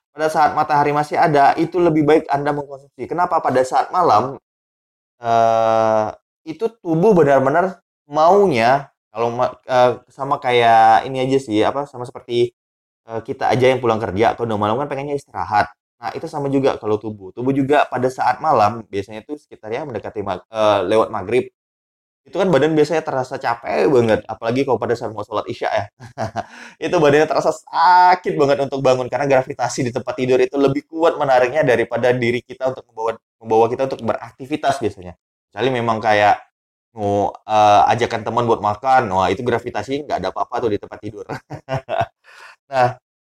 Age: 20-39